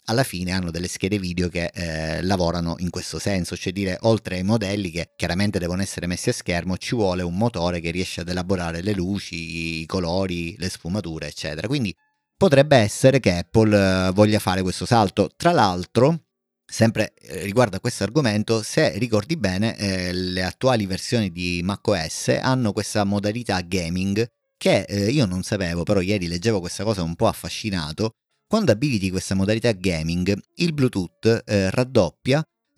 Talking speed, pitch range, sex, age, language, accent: 165 wpm, 90-110 Hz, male, 30-49, Italian, native